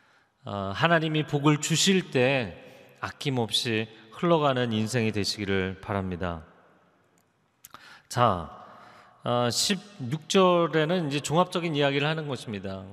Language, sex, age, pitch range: Korean, male, 40-59, 110-165 Hz